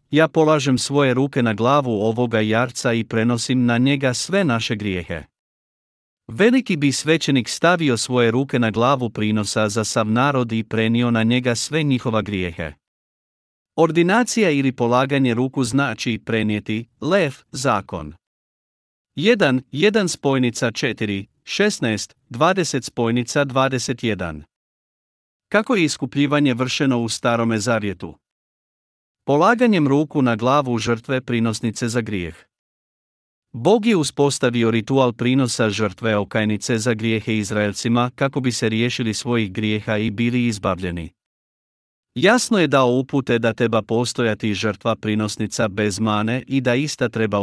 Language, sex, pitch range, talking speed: Croatian, male, 110-140 Hz, 125 wpm